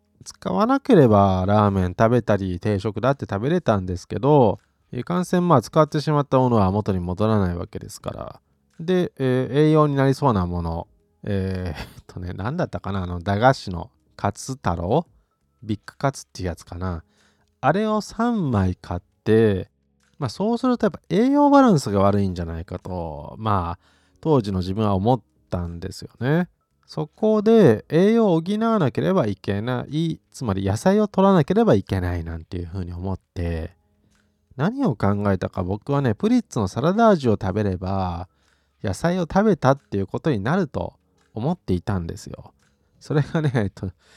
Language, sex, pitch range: Japanese, male, 90-145 Hz